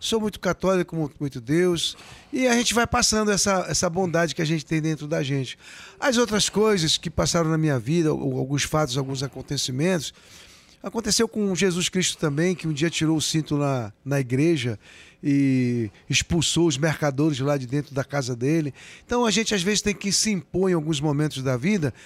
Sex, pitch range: male, 150-190 Hz